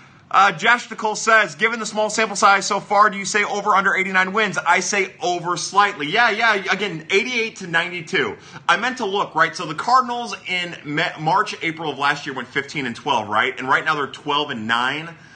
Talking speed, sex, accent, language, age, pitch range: 210 wpm, male, American, English, 30-49, 145-200 Hz